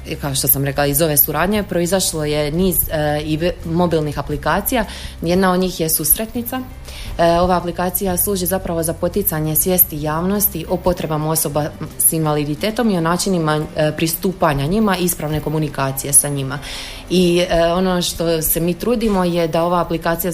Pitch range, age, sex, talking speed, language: 155-180 Hz, 20-39, female, 160 wpm, Croatian